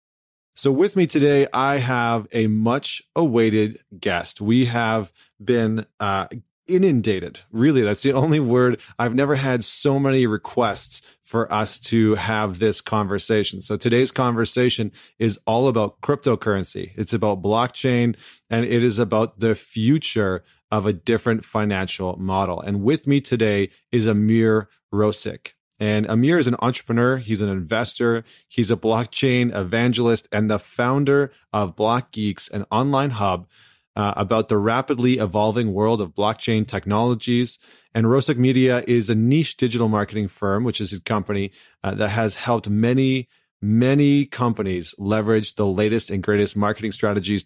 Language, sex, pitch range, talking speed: English, male, 105-125 Hz, 145 wpm